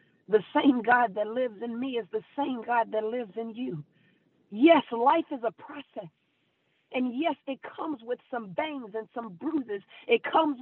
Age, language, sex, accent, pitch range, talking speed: 40-59, English, female, American, 180-265 Hz, 180 wpm